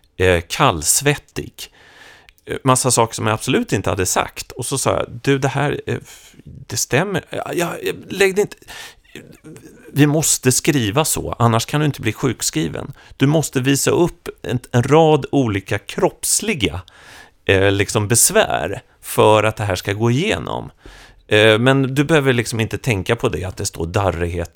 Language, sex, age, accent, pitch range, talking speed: Swedish, male, 30-49, native, 85-125 Hz, 155 wpm